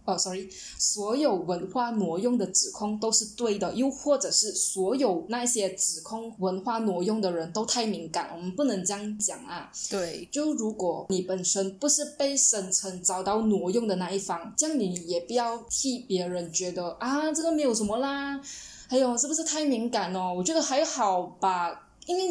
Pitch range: 185-250 Hz